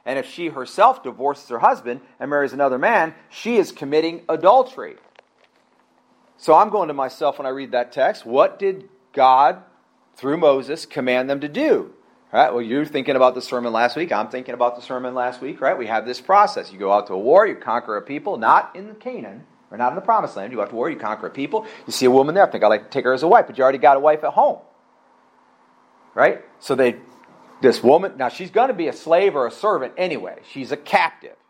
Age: 40-59